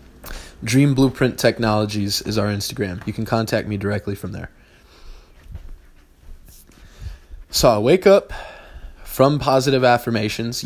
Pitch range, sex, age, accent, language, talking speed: 100-145 Hz, male, 20-39, American, English, 115 wpm